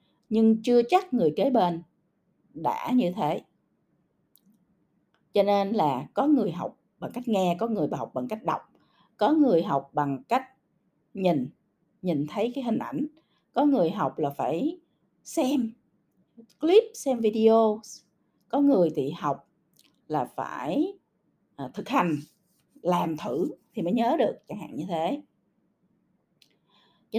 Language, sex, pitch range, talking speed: Vietnamese, female, 165-250 Hz, 140 wpm